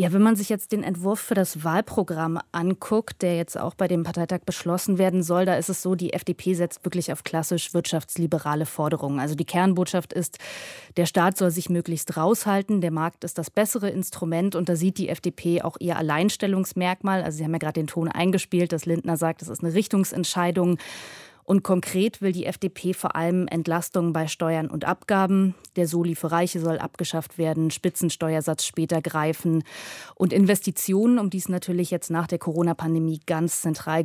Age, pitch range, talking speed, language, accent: 20-39, 165-185 Hz, 185 wpm, German, German